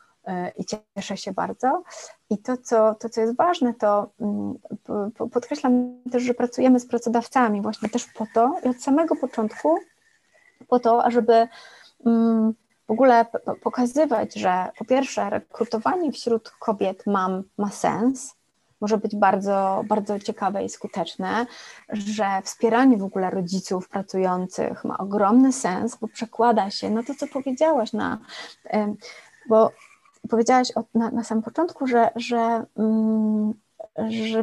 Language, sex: Polish, female